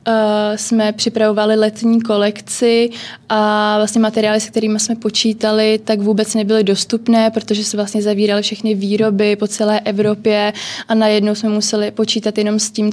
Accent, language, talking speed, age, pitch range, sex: native, Czech, 150 wpm, 20-39, 210-225 Hz, female